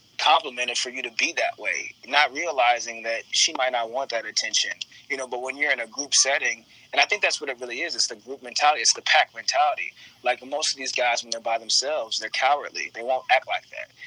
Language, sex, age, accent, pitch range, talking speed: English, male, 20-39, American, 115-135 Hz, 245 wpm